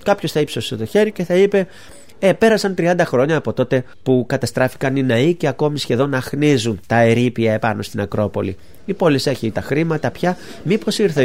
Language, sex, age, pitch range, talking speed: Greek, male, 30-49, 125-165 Hz, 185 wpm